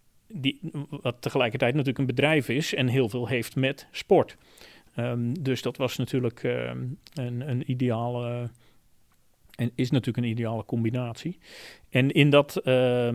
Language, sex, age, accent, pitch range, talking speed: Dutch, male, 40-59, Dutch, 120-145 Hz, 130 wpm